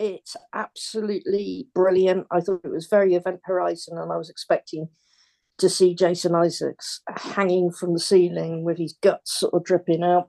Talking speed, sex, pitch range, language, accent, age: 170 wpm, female, 170-215 Hz, English, British, 50-69